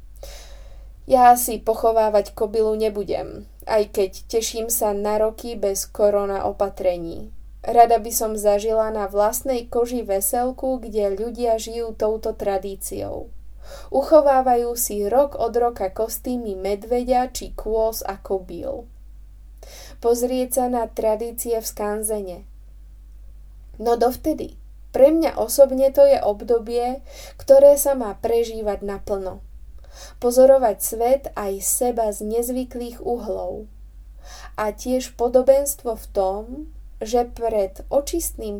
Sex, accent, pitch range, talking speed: female, native, 200-250 Hz, 110 wpm